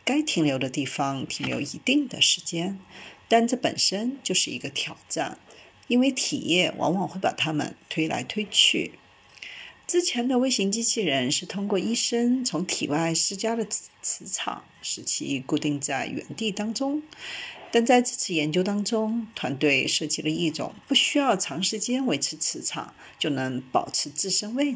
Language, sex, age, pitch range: Chinese, female, 50-69, 160-245 Hz